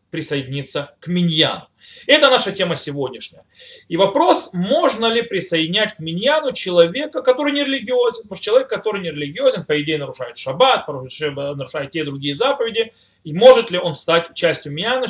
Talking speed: 155 wpm